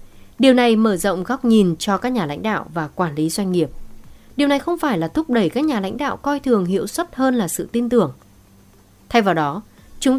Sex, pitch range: female, 170-255 Hz